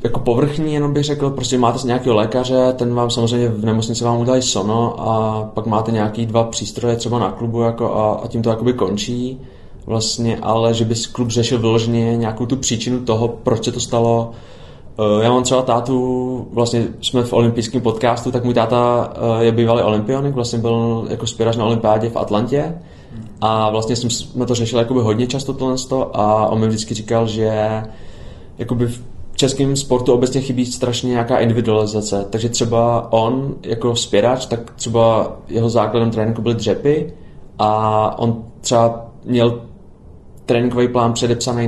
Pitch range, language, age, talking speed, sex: 110-125 Hz, Czech, 20-39, 160 wpm, male